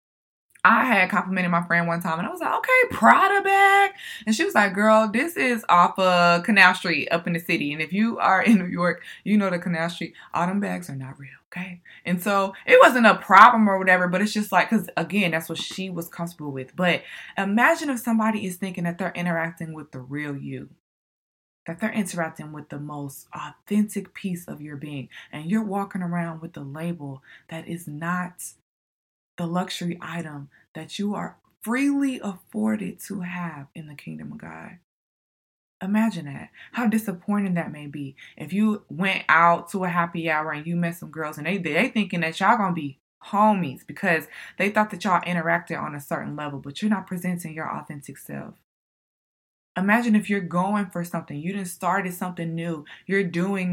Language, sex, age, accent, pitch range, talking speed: English, female, 20-39, American, 165-200 Hz, 195 wpm